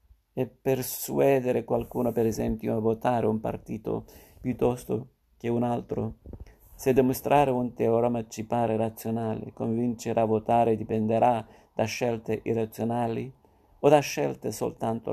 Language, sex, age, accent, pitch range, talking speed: Italian, male, 50-69, native, 110-125 Hz, 125 wpm